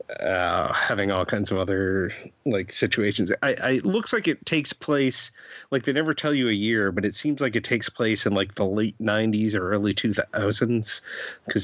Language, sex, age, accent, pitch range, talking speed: English, male, 30-49, American, 105-130 Hz, 200 wpm